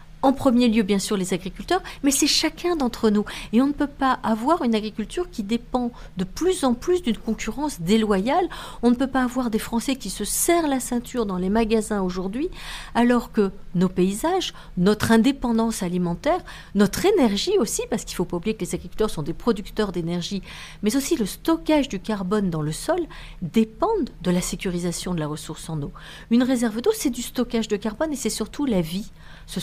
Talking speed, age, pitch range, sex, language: 205 wpm, 50-69, 185-250 Hz, female, French